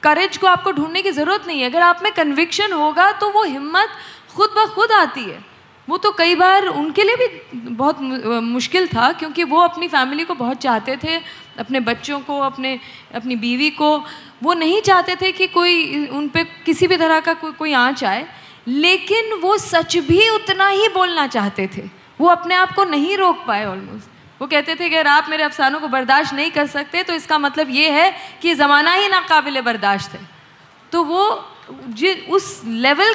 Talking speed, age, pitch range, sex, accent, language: 195 wpm, 20-39, 280-370 Hz, female, native, Hindi